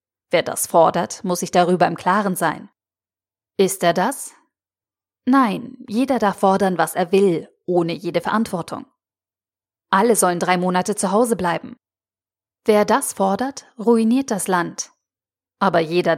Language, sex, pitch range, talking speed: German, female, 175-220 Hz, 135 wpm